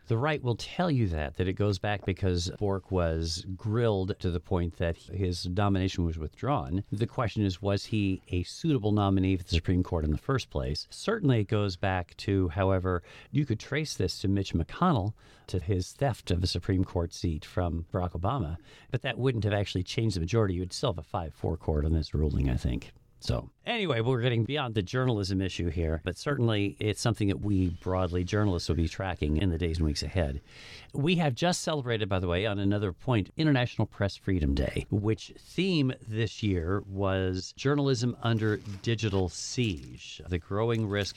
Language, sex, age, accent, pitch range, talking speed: English, male, 50-69, American, 90-115 Hz, 195 wpm